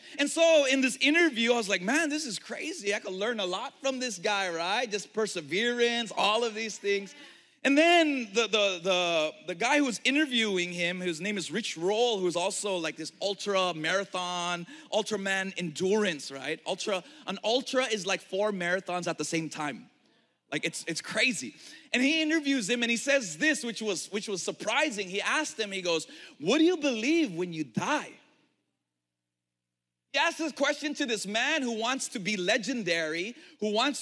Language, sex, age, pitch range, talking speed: English, male, 30-49, 190-285 Hz, 190 wpm